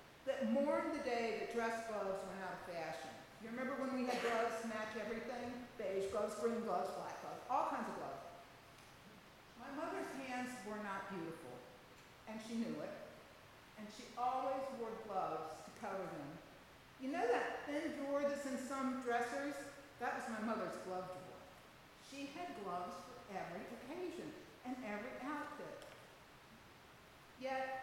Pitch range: 210-275 Hz